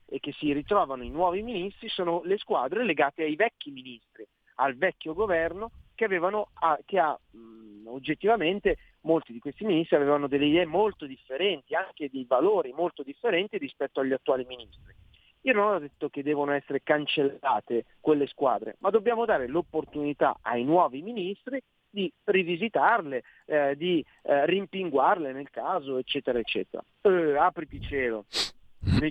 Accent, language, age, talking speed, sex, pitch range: native, Italian, 40-59, 150 wpm, male, 130-180 Hz